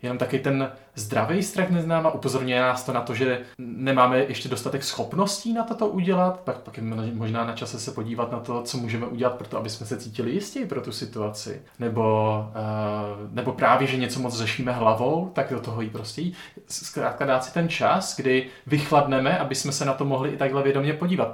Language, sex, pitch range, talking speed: Czech, male, 120-145 Hz, 210 wpm